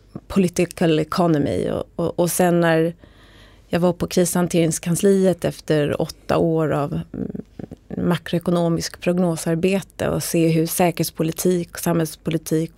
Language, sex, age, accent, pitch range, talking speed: Swedish, female, 30-49, native, 160-190 Hz, 105 wpm